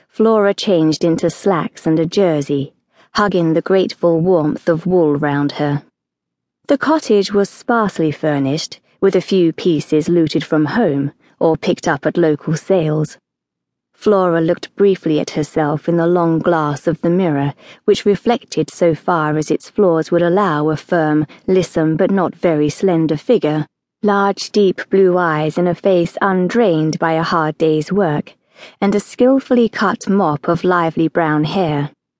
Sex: female